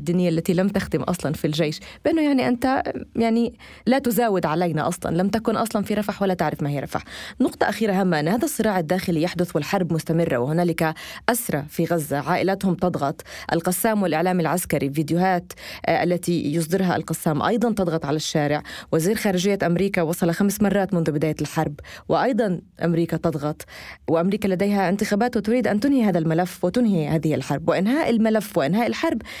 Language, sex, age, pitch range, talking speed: Arabic, female, 20-39, 170-215 Hz, 160 wpm